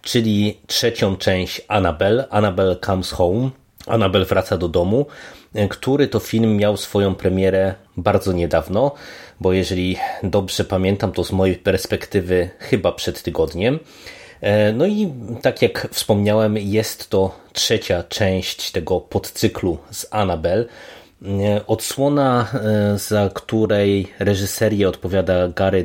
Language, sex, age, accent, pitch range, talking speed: Polish, male, 30-49, native, 95-110 Hz, 115 wpm